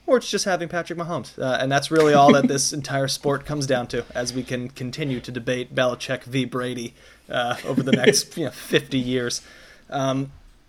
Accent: American